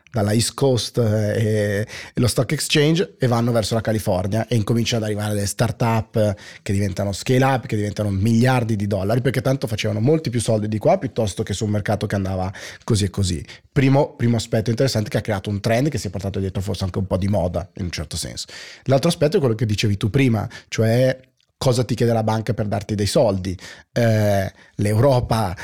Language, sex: Italian, male